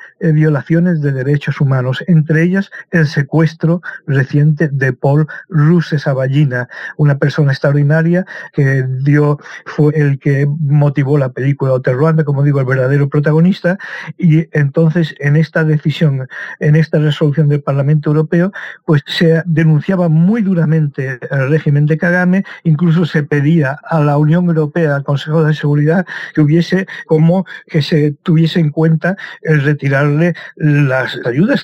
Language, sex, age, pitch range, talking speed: Spanish, male, 50-69, 145-170 Hz, 140 wpm